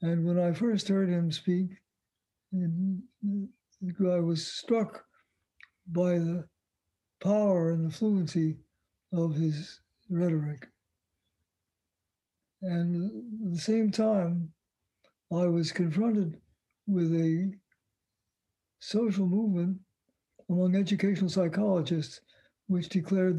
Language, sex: English, male